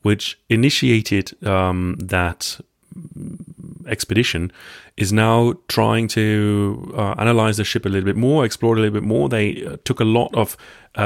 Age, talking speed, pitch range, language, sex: 30-49, 155 wpm, 95-115 Hz, English, male